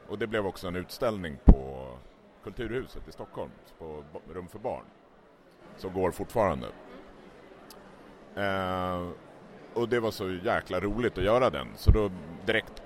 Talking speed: 140 wpm